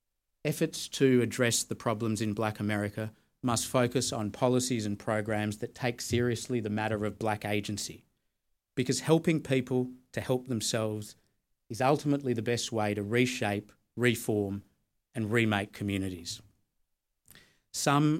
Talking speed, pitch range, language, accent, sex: 130 wpm, 105-125 Hz, English, Australian, male